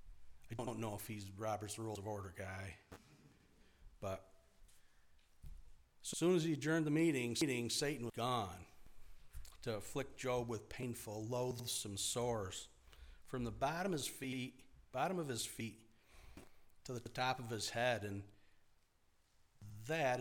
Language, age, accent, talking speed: English, 50-69, American, 130 wpm